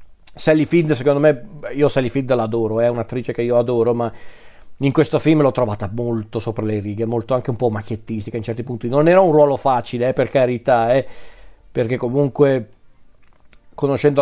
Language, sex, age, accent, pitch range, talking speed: Italian, male, 40-59, native, 115-145 Hz, 180 wpm